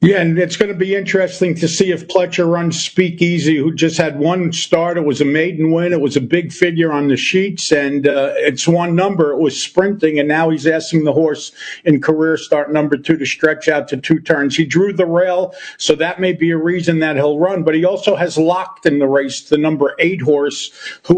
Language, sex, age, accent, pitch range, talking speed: English, male, 50-69, American, 155-180 Hz, 230 wpm